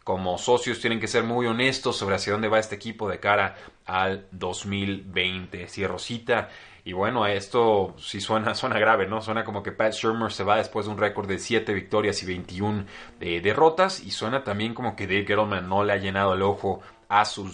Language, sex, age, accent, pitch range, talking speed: Spanish, male, 30-49, Mexican, 95-115 Hz, 205 wpm